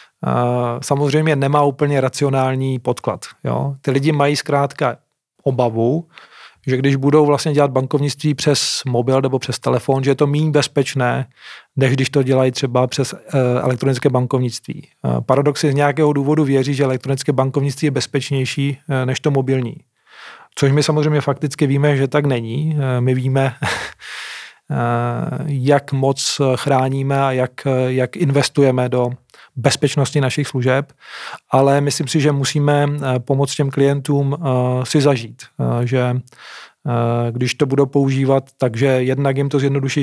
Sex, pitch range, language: male, 130-145 Hz, Czech